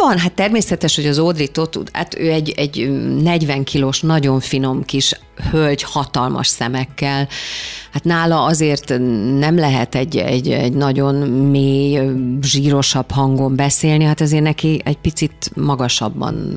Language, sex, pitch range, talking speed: Hungarian, female, 135-165 Hz, 140 wpm